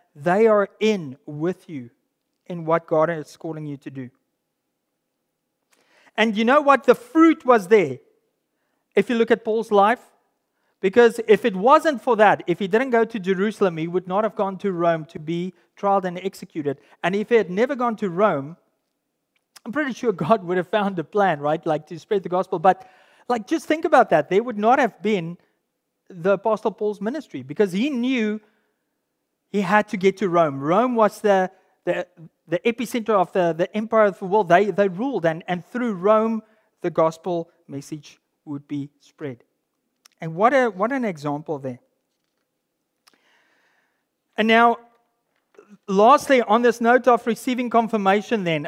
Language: English